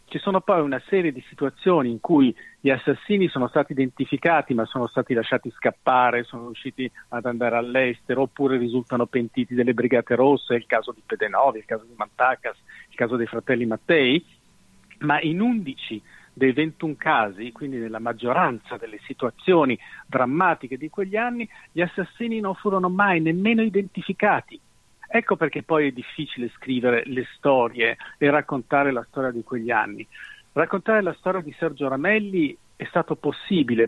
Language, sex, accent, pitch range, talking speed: Italian, male, native, 125-170 Hz, 160 wpm